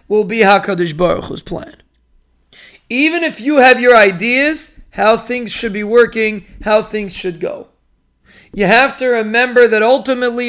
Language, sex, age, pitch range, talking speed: English, male, 30-49, 200-245 Hz, 150 wpm